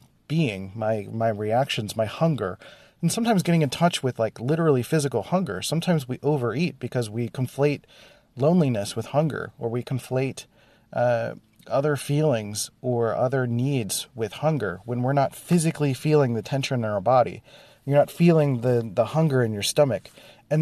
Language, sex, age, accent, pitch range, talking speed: English, male, 30-49, American, 115-145 Hz, 165 wpm